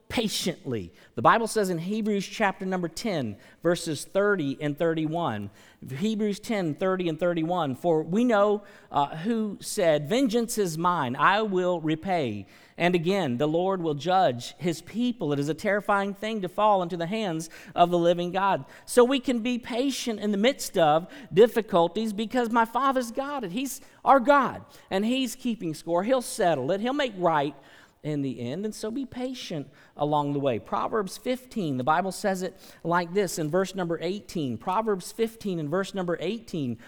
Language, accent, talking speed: English, American, 175 wpm